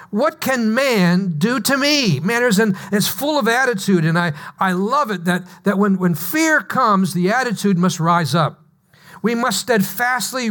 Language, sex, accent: English, male, American